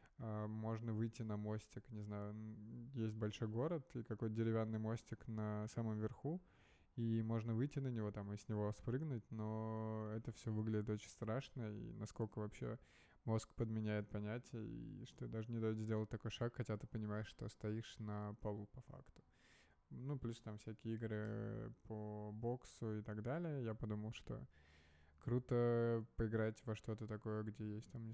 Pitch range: 105-115 Hz